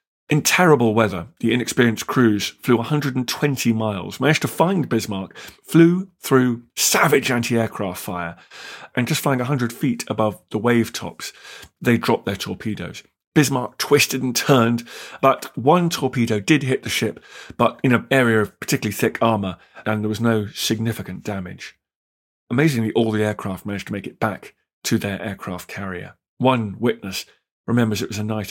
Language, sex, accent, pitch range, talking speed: English, male, British, 100-130 Hz, 160 wpm